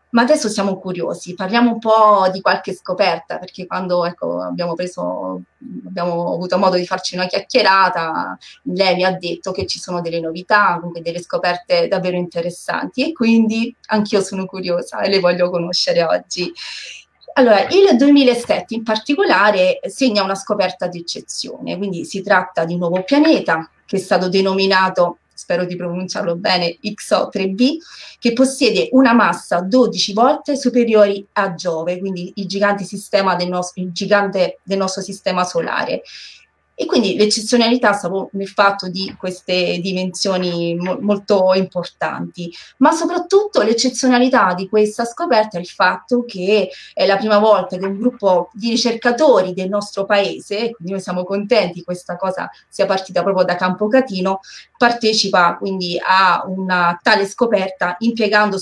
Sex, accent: female, native